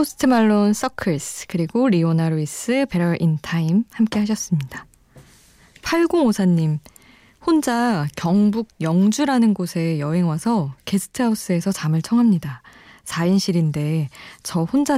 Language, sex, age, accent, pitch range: Korean, female, 20-39, native, 160-215 Hz